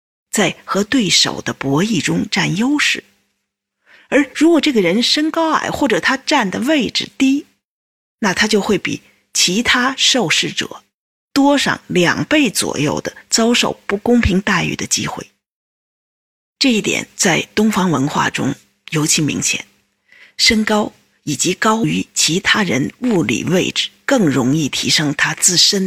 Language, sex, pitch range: Chinese, female, 170-260 Hz